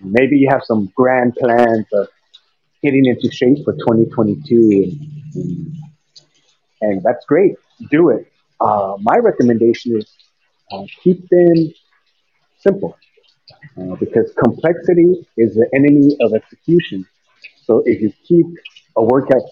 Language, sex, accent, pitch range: English, male, American, 110-150 Hz